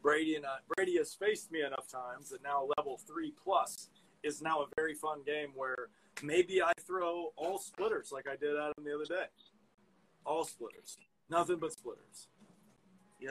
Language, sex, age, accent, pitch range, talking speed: English, male, 20-39, American, 150-195 Hz, 175 wpm